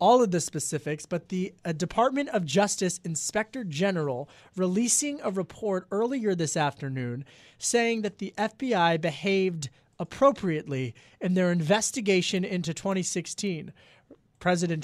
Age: 30-49